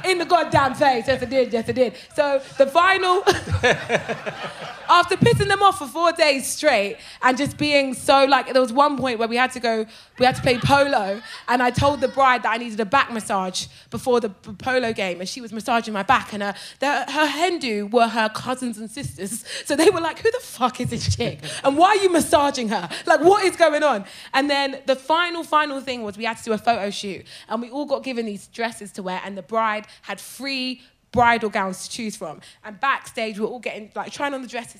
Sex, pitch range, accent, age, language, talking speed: female, 225-300 Hz, British, 20-39, English, 235 wpm